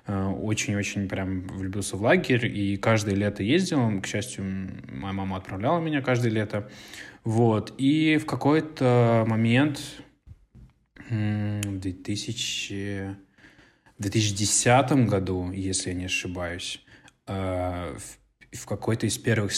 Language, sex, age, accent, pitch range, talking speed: Russian, male, 20-39, native, 95-120 Hz, 105 wpm